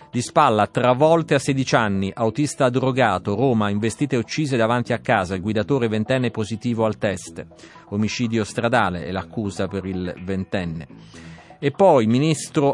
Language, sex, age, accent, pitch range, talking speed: Italian, male, 40-59, native, 100-130 Hz, 140 wpm